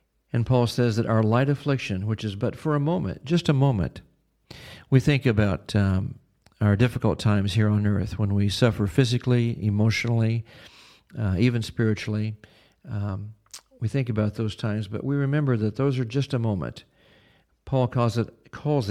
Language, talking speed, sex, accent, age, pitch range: English, 165 wpm, male, American, 50-69, 105-130 Hz